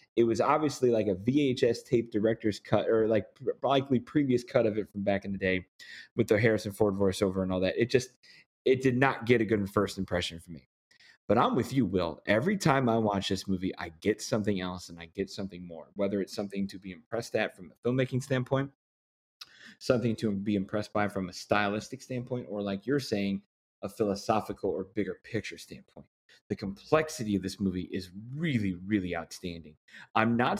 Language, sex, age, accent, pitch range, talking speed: English, male, 30-49, American, 95-115 Hz, 200 wpm